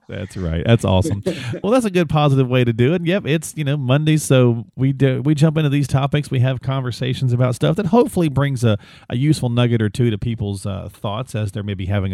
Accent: American